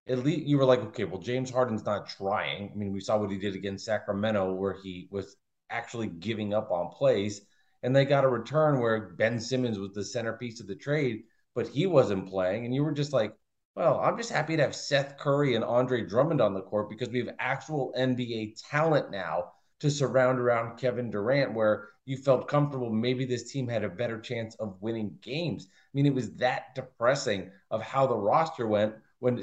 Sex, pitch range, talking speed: male, 110-135 Hz, 210 wpm